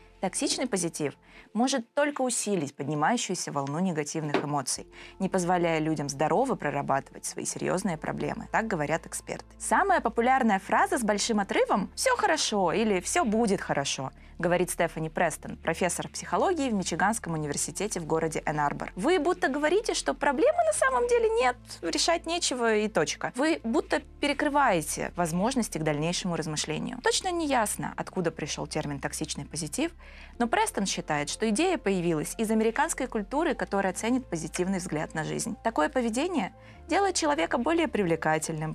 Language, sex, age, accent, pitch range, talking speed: Russian, female, 20-39, native, 165-250 Hz, 140 wpm